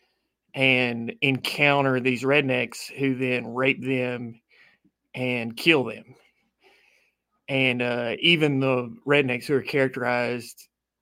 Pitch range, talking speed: 125-135 Hz, 105 wpm